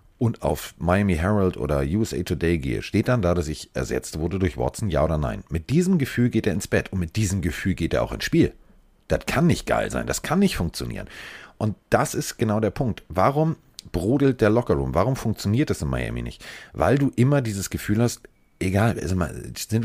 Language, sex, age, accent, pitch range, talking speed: German, male, 40-59, German, 90-115 Hz, 210 wpm